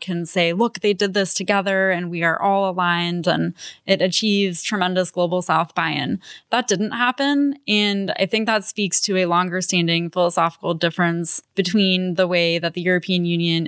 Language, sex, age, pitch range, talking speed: English, female, 20-39, 175-200 Hz, 175 wpm